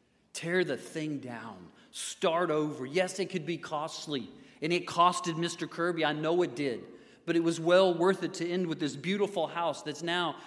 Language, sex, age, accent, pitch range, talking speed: English, male, 40-59, American, 120-170 Hz, 195 wpm